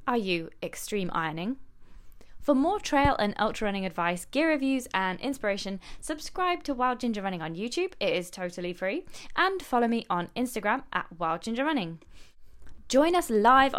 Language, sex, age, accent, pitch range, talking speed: English, female, 10-29, British, 195-275 Hz, 165 wpm